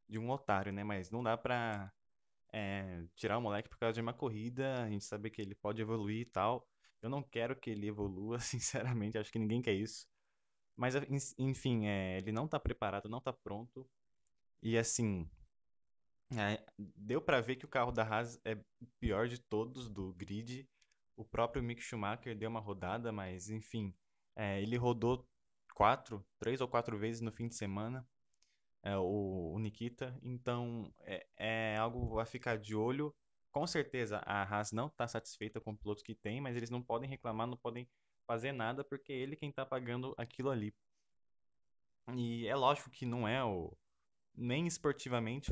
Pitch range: 105-130 Hz